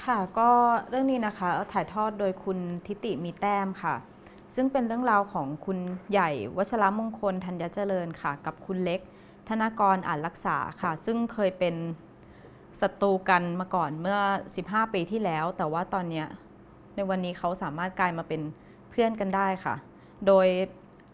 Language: Thai